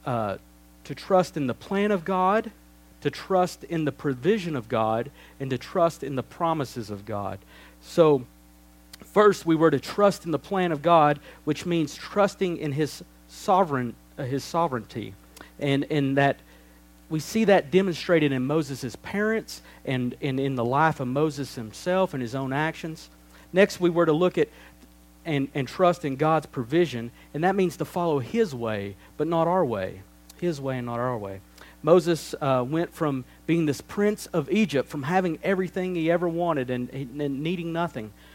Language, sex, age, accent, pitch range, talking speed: English, male, 50-69, American, 115-165 Hz, 175 wpm